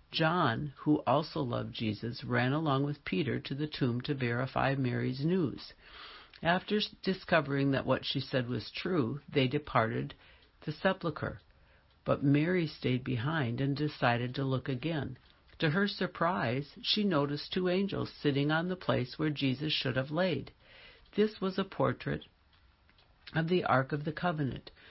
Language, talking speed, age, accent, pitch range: English, 150 wpm, 60-79, American, 125-160 Hz